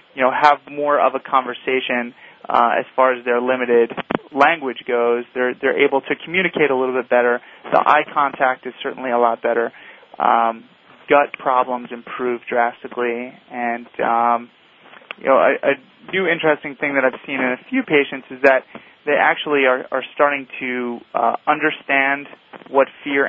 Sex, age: male, 30-49